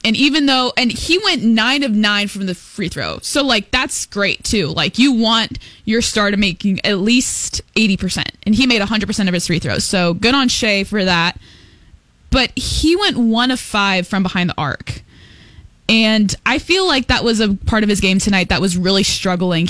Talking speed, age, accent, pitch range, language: 215 wpm, 10-29, American, 185-235 Hz, English